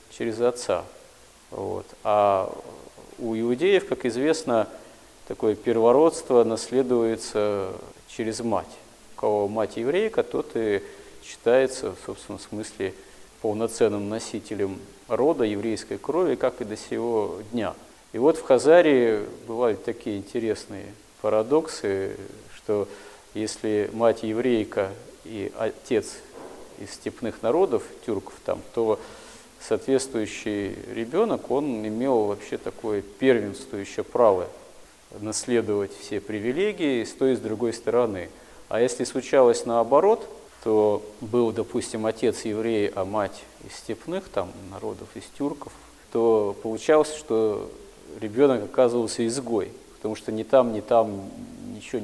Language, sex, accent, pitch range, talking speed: Russian, male, native, 105-130 Hz, 115 wpm